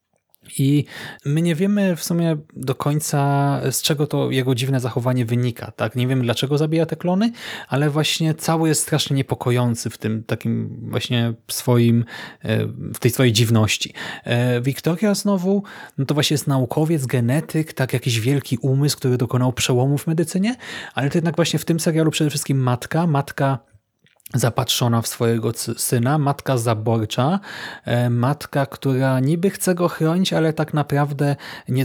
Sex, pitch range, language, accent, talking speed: male, 120-155 Hz, Polish, native, 155 wpm